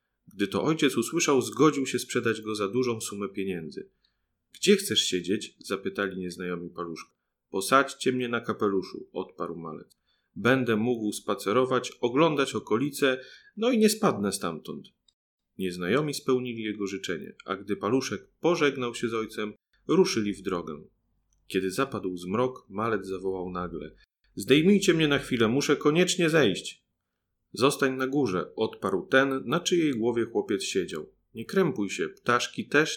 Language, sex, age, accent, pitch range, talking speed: Polish, male, 30-49, native, 105-145 Hz, 140 wpm